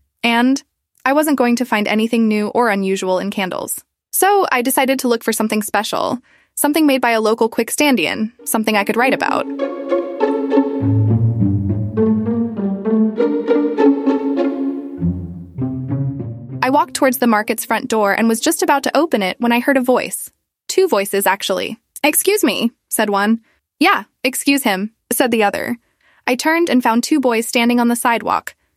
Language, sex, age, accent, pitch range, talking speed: English, female, 20-39, American, 200-265 Hz, 150 wpm